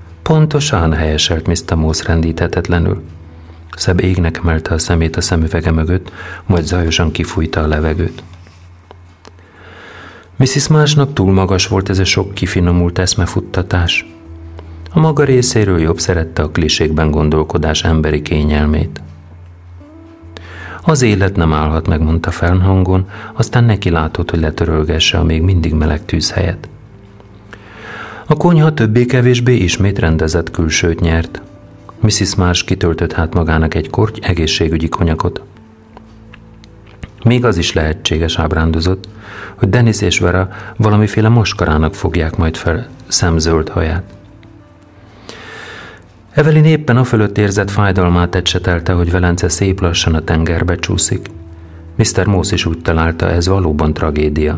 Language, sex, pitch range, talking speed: Hungarian, male, 80-100 Hz, 120 wpm